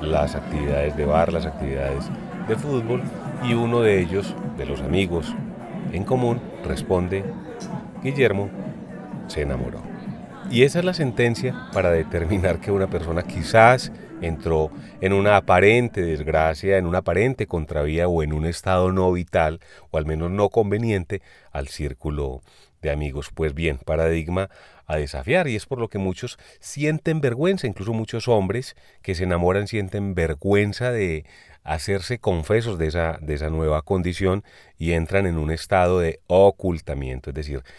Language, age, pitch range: Spanish, 30-49, 80-115 Hz